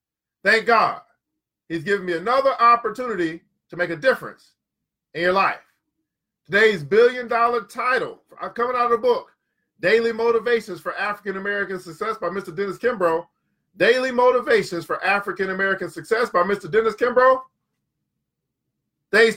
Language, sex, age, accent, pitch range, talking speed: English, male, 40-59, American, 185-240 Hz, 135 wpm